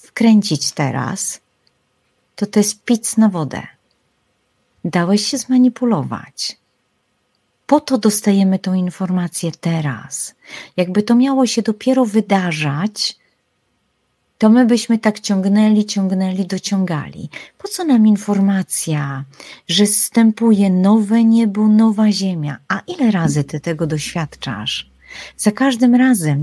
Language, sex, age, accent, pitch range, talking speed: Polish, female, 40-59, native, 170-235 Hz, 110 wpm